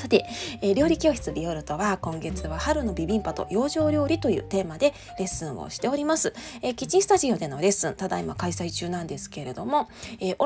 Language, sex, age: Japanese, female, 20-39